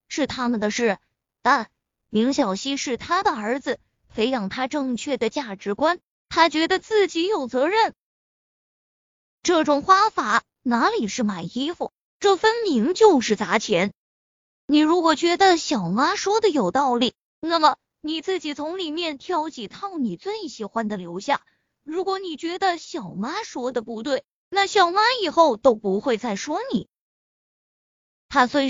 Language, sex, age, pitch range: Chinese, female, 20-39, 235-345 Hz